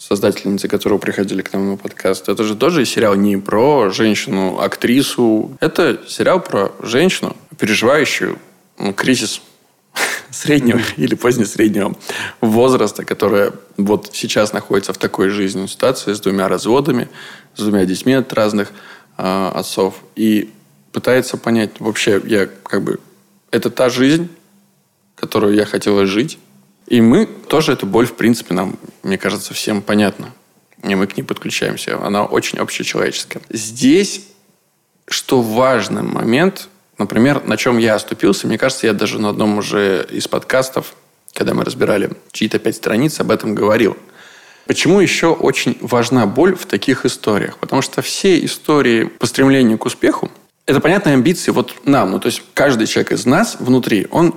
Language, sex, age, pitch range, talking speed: Russian, male, 20-39, 100-130 Hz, 145 wpm